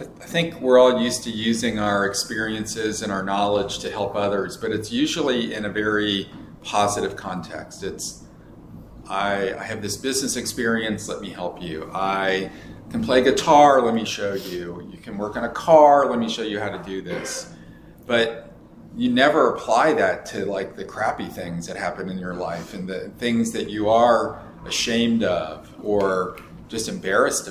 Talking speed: 180 wpm